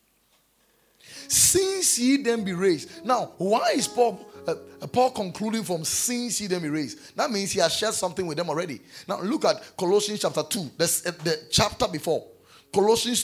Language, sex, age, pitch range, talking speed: English, male, 30-49, 170-255 Hz, 170 wpm